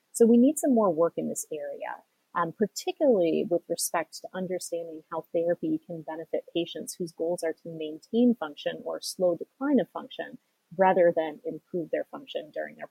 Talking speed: 175 wpm